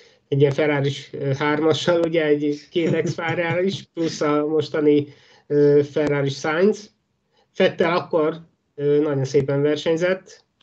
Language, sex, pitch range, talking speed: Hungarian, male, 130-155 Hz, 120 wpm